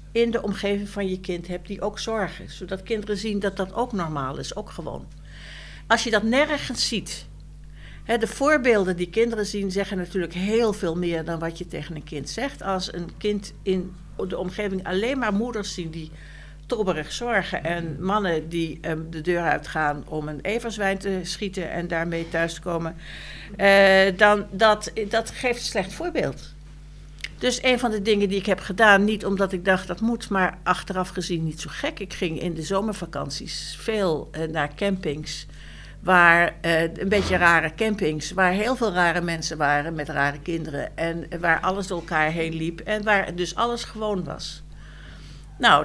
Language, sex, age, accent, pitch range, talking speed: Dutch, female, 60-79, Dutch, 165-210 Hz, 180 wpm